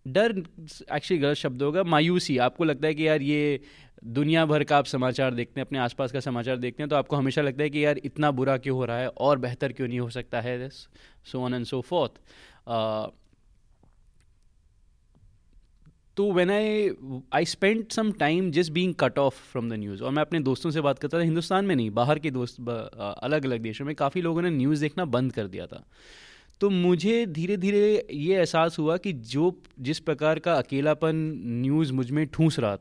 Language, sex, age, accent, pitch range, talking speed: Hindi, male, 20-39, native, 130-180 Hz, 200 wpm